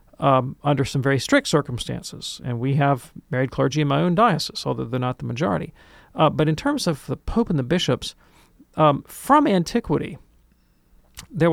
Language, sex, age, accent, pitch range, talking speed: English, male, 40-59, American, 125-155 Hz, 175 wpm